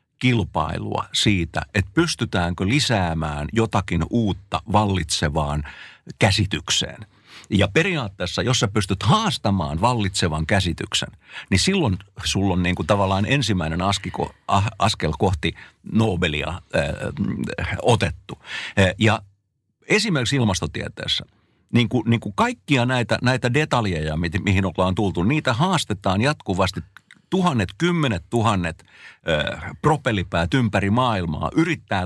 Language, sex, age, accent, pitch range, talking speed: Finnish, male, 60-79, native, 90-125 Hz, 95 wpm